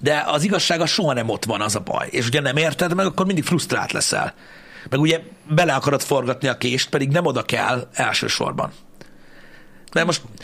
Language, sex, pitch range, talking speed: Hungarian, male, 125-180 Hz, 190 wpm